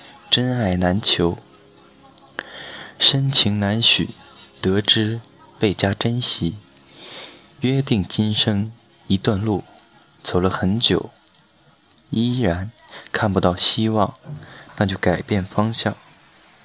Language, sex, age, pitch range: Chinese, male, 20-39, 95-120 Hz